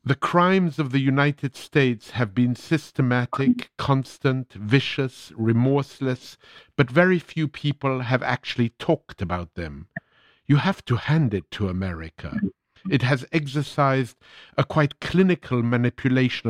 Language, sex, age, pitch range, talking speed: English, male, 50-69, 110-140 Hz, 125 wpm